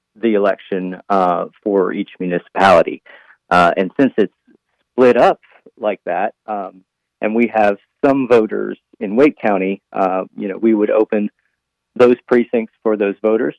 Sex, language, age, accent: male, English, 40-59, American